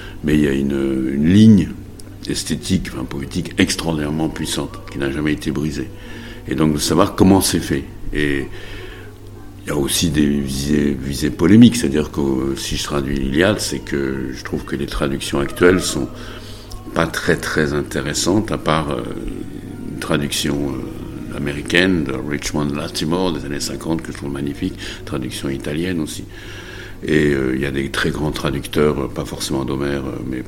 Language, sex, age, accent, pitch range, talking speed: French, male, 60-79, French, 70-95 Hz, 165 wpm